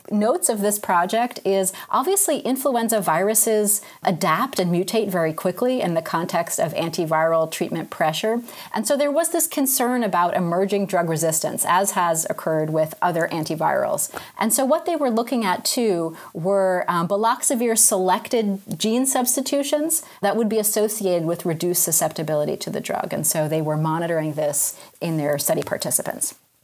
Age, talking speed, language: 30-49, 155 wpm, English